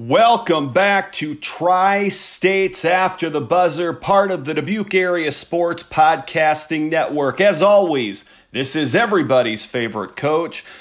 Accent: American